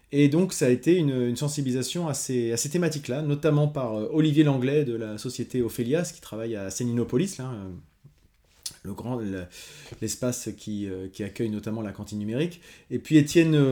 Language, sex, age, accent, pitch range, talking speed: French, male, 30-49, French, 115-150 Hz, 165 wpm